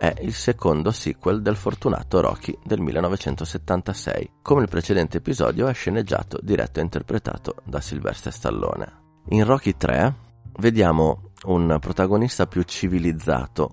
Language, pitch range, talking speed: Italian, 75-100 Hz, 125 wpm